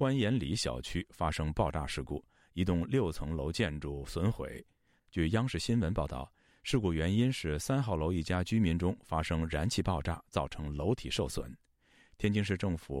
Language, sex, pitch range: Chinese, male, 75-105 Hz